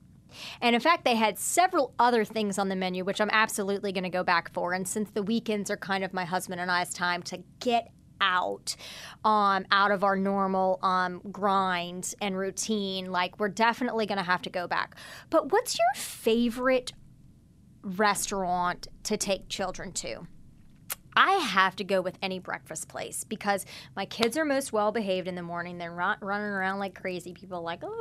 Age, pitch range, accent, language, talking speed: 30-49, 185-215 Hz, American, English, 185 wpm